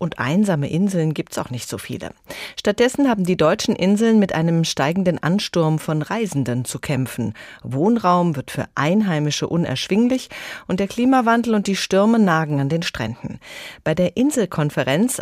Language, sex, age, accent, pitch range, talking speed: German, female, 40-59, German, 140-205 Hz, 160 wpm